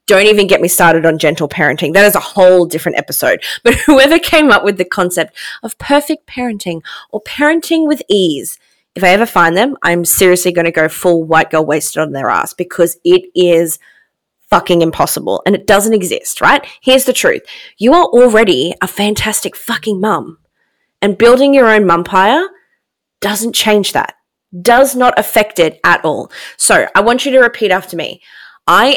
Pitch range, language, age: 170-235 Hz, English, 20-39